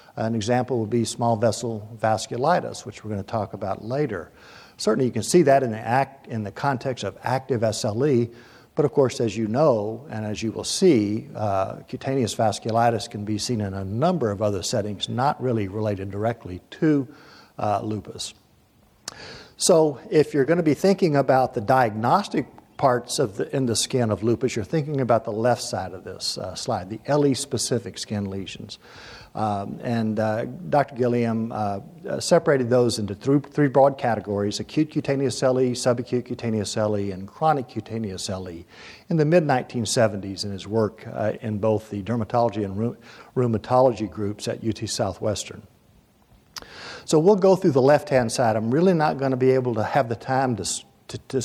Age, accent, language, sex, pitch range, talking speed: 60-79, American, English, male, 105-135 Hz, 175 wpm